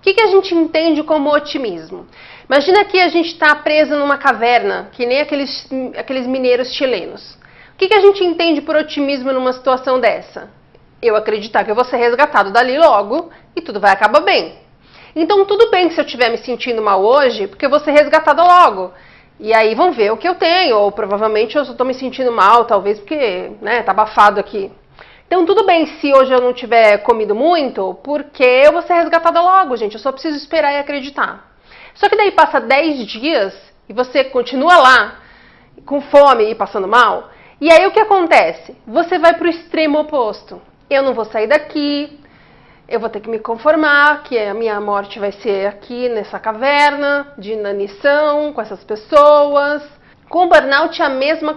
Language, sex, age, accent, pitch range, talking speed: Portuguese, female, 40-59, Brazilian, 230-315 Hz, 190 wpm